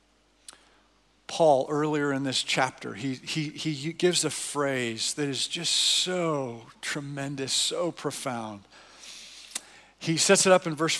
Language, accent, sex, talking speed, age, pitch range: English, American, male, 130 wpm, 50-69, 150-195 Hz